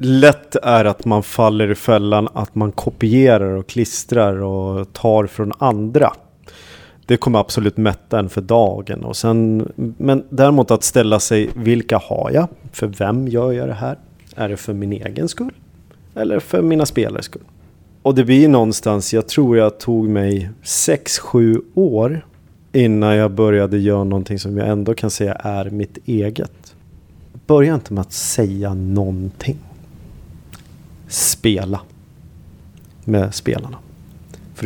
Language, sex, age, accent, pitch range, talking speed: Swedish, male, 30-49, native, 95-120 Hz, 145 wpm